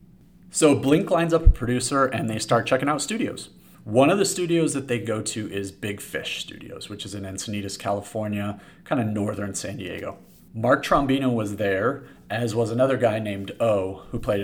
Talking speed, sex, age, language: 190 wpm, male, 30-49, English